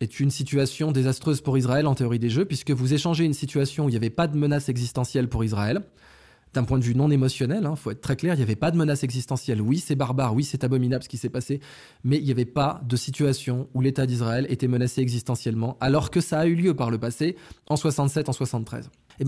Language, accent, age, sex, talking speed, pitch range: French, French, 20-39, male, 250 wpm, 125-150 Hz